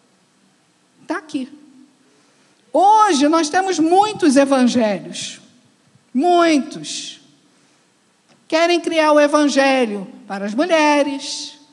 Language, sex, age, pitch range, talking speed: Portuguese, female, 50-69, 250-315 Hz, 75 wpm